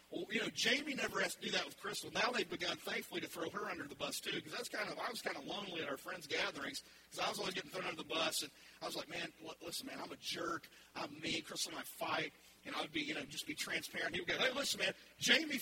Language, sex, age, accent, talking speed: English, male, 40-59, American, 290 wpm